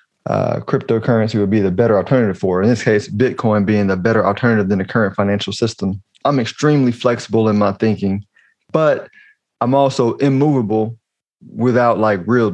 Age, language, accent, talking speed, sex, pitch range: 20-39, English, American, 165 wpm, male, 110-130 Hz